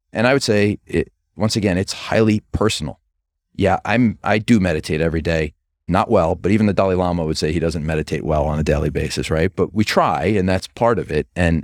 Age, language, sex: 30-49, English, male